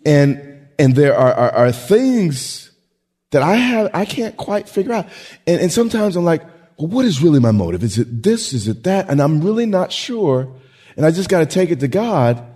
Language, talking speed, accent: English, 220 wpm, American